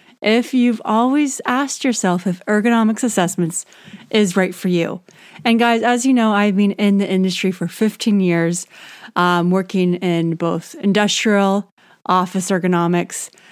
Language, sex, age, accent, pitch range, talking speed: English, female, 30-49, American, 185-240 Hz, 140 wpm